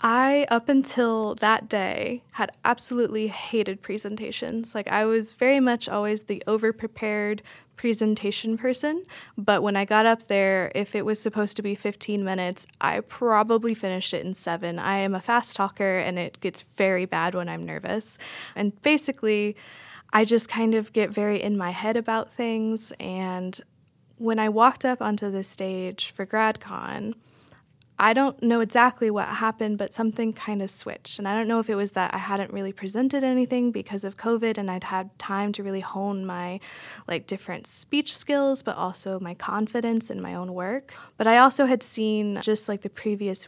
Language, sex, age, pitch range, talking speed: English, female, 10-29, 190-225 Hz, 180 wpm